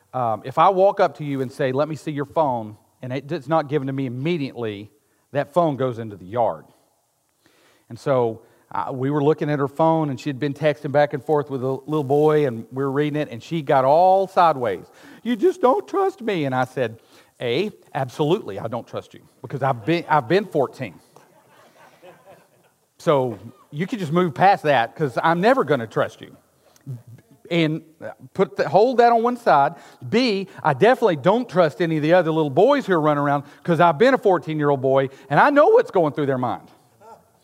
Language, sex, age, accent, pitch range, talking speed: English, male, 40-59, American, 140-190 Hz, 205 wpm